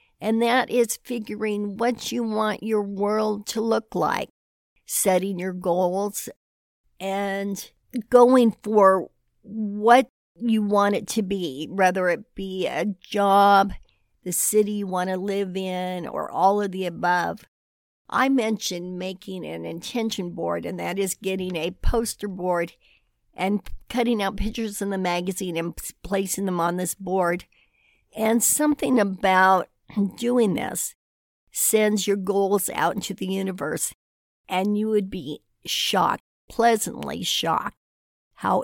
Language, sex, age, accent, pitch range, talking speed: English, female, 60-79, American, 180-215 Hz, 135 wpm